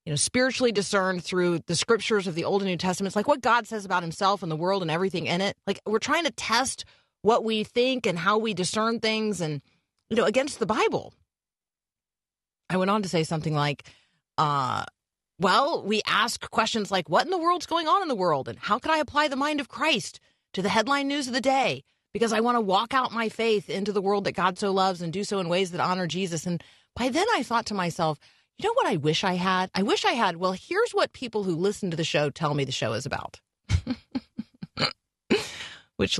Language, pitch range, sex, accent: English, 180-255 Hz, female, American